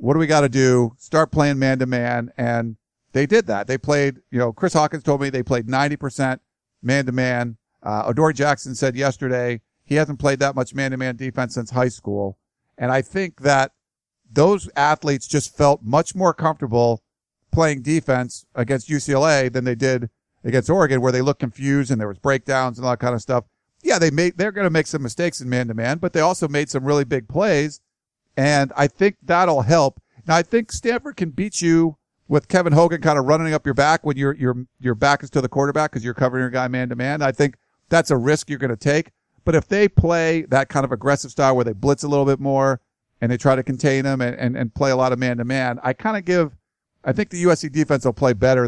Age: 50-69